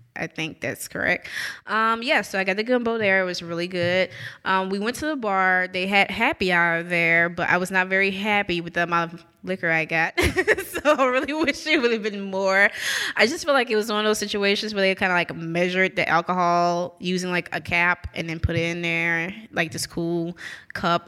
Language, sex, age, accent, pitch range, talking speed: English, female, 20-39, American, 170-215 Hz, 230 wpm